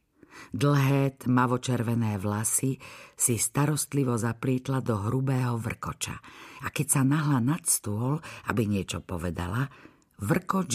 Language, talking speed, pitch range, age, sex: Slovak, 110 wpm, 110-135 Hz, 50-69, female